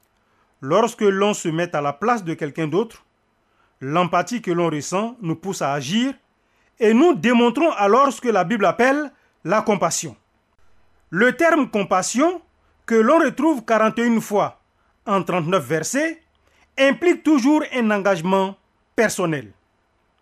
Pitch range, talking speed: 155-240 Hz, 135 wpm